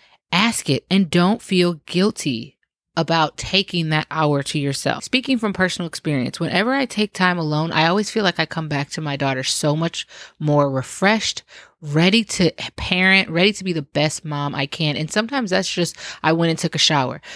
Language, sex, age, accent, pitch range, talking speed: English, female, 20-39, American, 145-175 Hz, 195 wpm